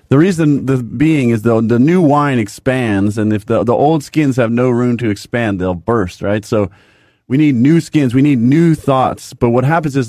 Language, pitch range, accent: English, 115-155 Hz, American